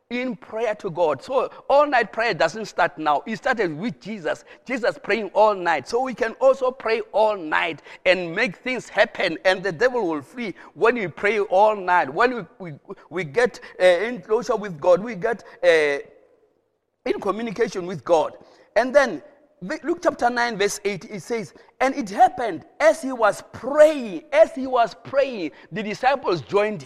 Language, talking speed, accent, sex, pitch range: English, 180 wpm, South African, male, 200-295 Hz